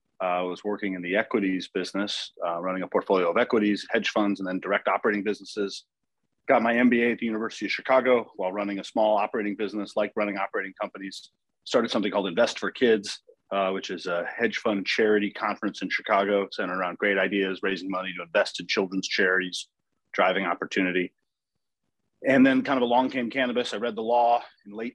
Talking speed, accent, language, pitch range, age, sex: 190 wpm, American, English, 95-115 Hz, 30-49, male